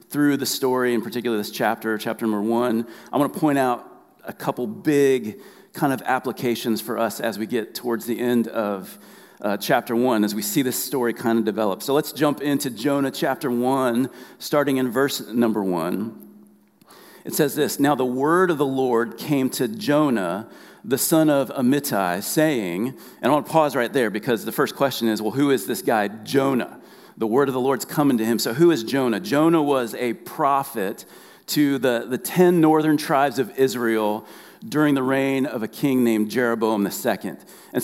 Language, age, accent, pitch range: English, 40-59, American, 115-145 Hz